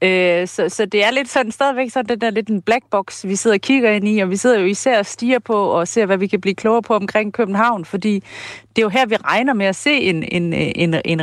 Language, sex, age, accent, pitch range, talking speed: Danish, female, 40-59, native, 175-225 Hz, 280 wpm